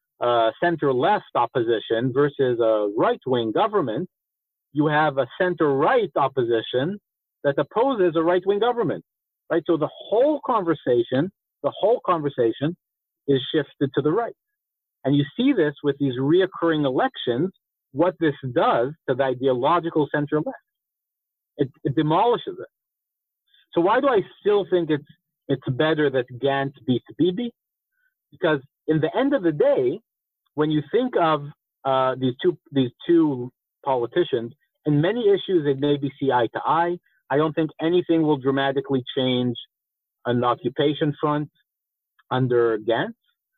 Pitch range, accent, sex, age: 130-175 Hz, American, male, 50-69